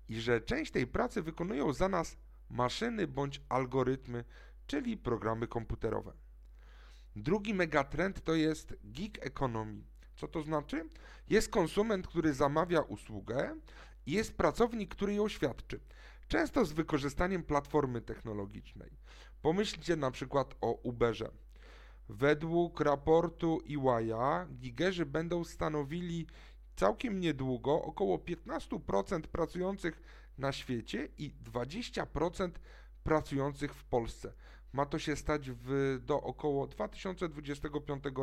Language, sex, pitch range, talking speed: Polish, male, 120-175 Hz, 110 wpm